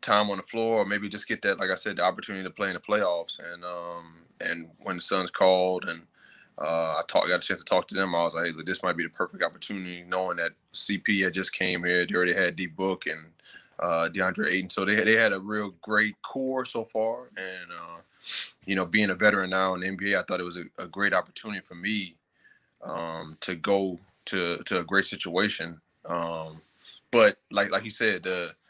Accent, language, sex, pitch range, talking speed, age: American, English, male, 90-110 Hz, 230 wpm, 20-39